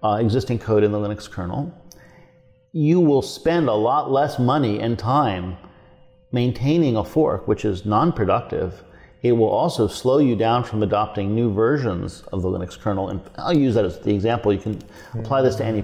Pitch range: 105-135 Hz